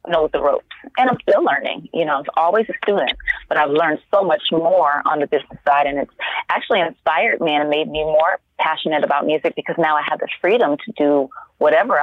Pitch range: 145-185 Hz